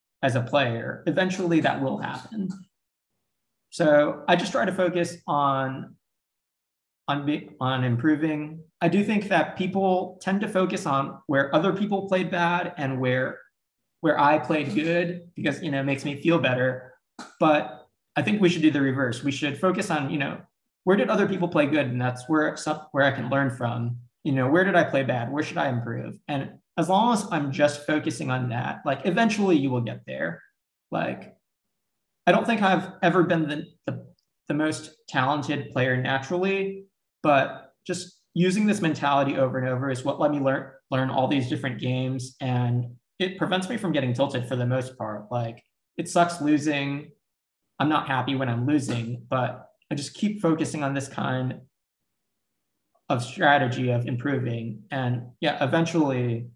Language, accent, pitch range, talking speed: English, American, 130-175 Hz, 180 wpm